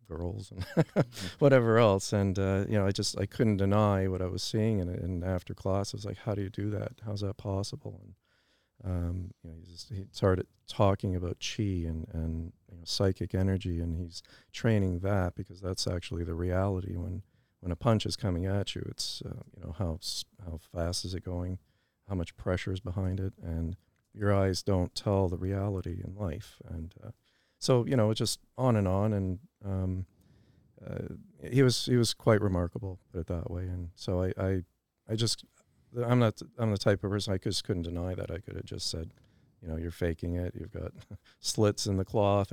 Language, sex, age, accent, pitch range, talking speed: English, male, 40-59, American, 90-105 Hz, 210 wpm